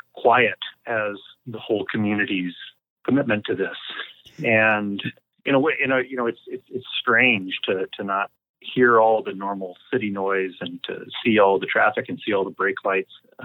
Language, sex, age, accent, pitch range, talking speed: English, male, 30-49, American, 95-120 Hz, 185 wpm